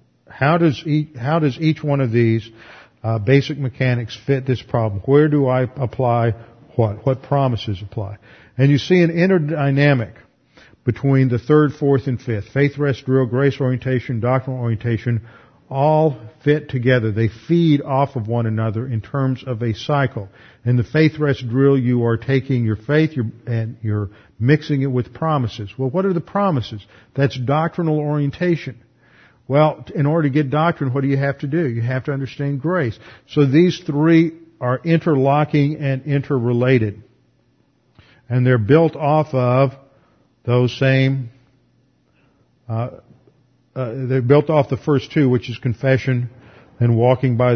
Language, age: English, 50-69